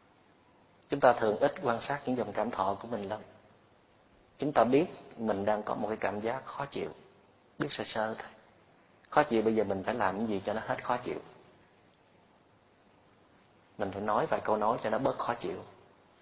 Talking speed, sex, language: 200 wpm, male, Vietnamese